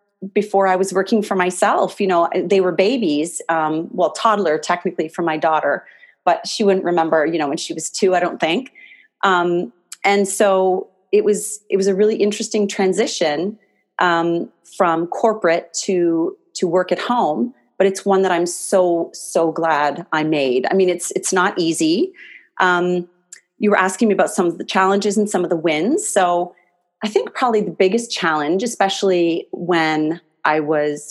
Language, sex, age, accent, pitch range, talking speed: English, female, 30-49, American, 170-205 Hz, 175 wpm